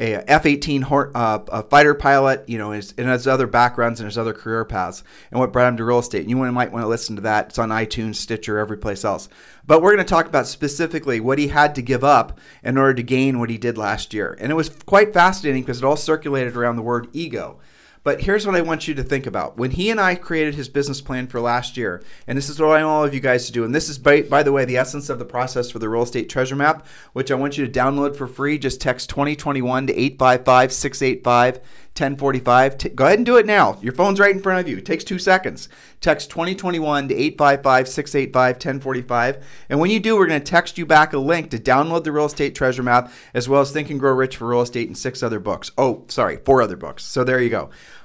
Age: 40-59